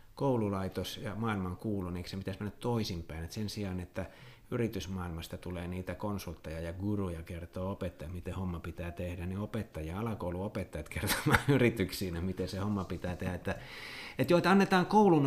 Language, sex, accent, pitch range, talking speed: Finnish, male, native, 95-125 Hz, 160 wpm